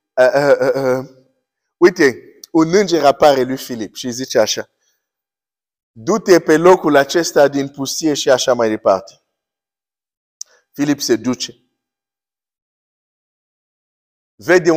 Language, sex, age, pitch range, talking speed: Romanian, male, 50-69, 120-170 Hz, 105 wpm